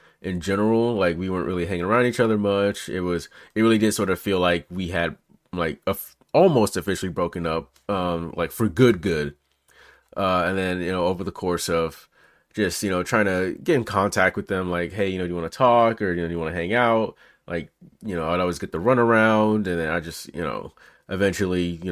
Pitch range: 85-100 Hz